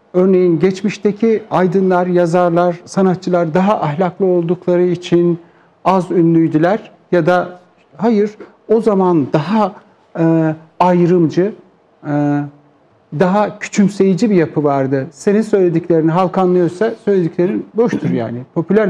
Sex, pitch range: male, 160-215 Hz